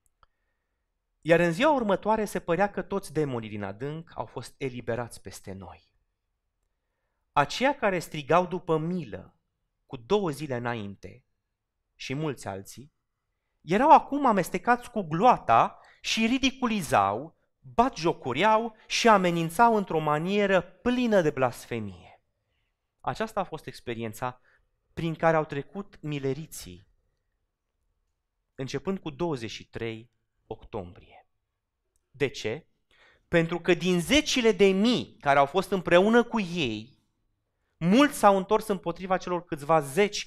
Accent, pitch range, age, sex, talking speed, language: native, 110-180 Hz, 30-49, male, 115 wpm, Romanian